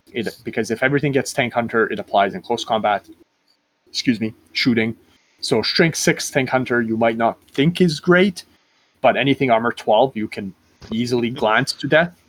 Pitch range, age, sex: 105-135 Hz, 30-49, male